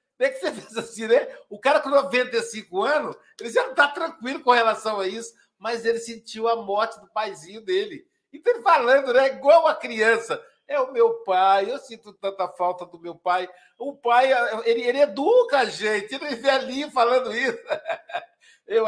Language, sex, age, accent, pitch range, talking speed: Portuguese, male, 60-79, Brazilian, 195-270 Hz, 190 wpm